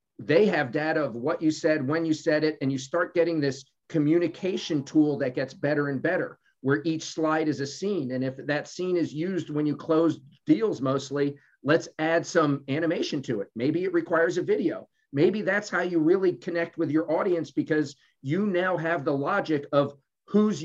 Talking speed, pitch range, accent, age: 200 wpm, 140-165 Hz, American, 50-69